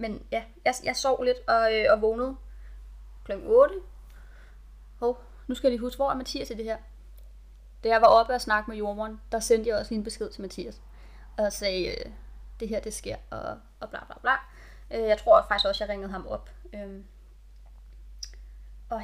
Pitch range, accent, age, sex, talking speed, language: 195-250 Hz, native, 20-39, female, 200 wpm, Danish